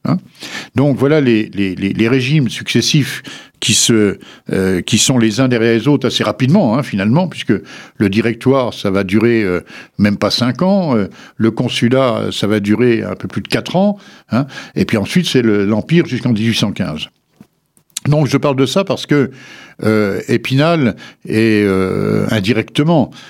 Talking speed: 170 wpm